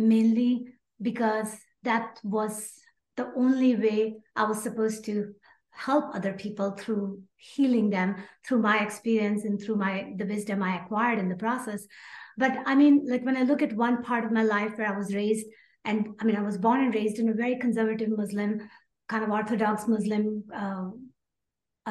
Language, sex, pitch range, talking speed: English, female, 210-240 Hz, 180 wpm